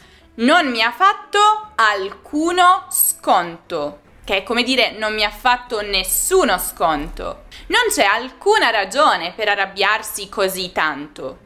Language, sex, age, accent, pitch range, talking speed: Italian, female, 20-39, native, 180-275 Hz, 125 wpm